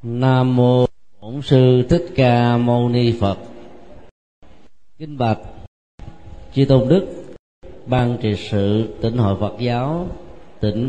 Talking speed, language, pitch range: 120 wpm, Vietnamese, 105-130 Hz